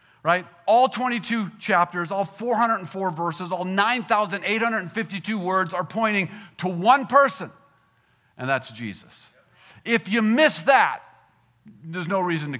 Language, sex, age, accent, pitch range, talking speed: English, male, 50-69, American, 150-195 Hz, 125 wpm